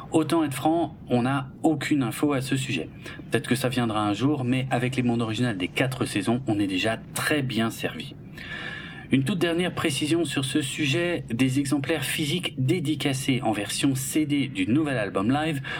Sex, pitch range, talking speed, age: male, 125-150 Hz, 180 wpm, 40-59